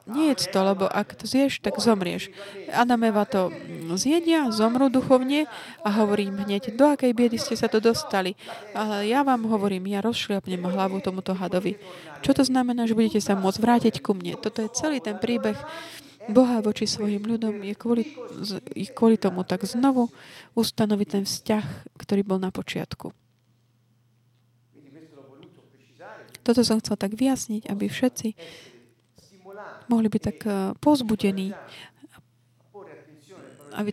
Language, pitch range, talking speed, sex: Slovak, 190-225 Hz, 135 wpm, female